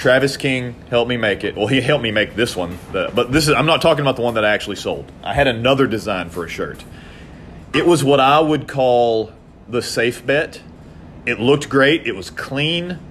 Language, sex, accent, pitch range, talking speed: English, male, American, 90-130 Hz, 220 wpm